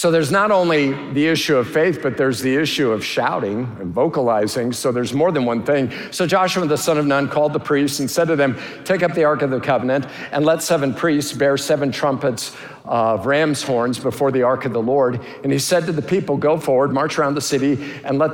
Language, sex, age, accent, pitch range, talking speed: English, male, 50-69, American, 120-145 Hz, 235 wpm